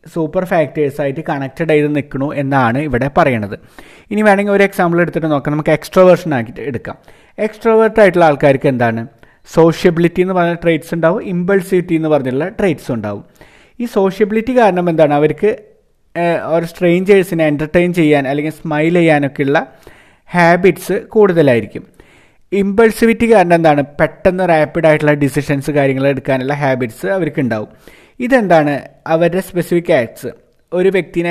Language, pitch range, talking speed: Malayalam, 145-180 Hz, 125 wpm